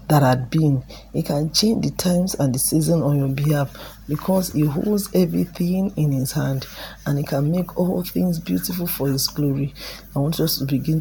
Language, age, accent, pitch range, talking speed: English, 40-59, Nigerian, 140-170 Hz, 195 wpm